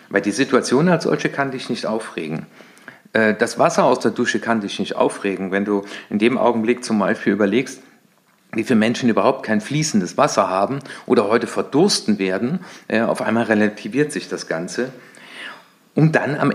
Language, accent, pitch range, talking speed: German, German, 105-150 Hz, 170 wpm